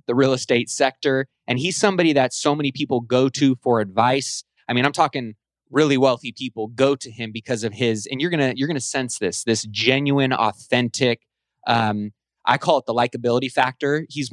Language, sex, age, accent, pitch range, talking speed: English, male, 20-39, American, 120-140 Hz, 200 wpm